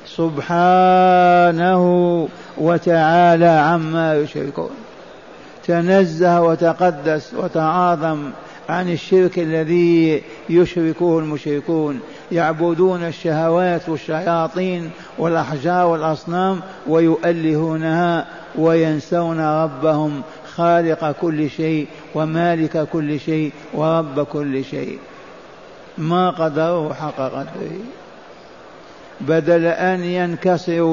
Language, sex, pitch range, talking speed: Arabic, male, 155-175 Hz, 70 wpm